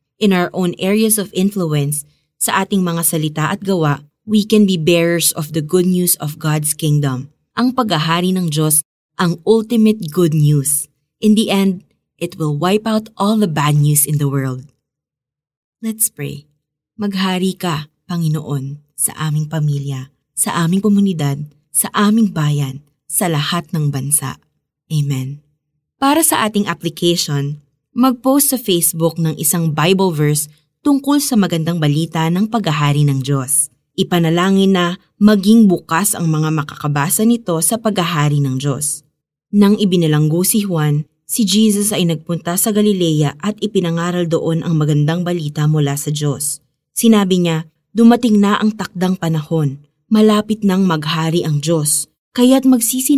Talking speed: 145 wpm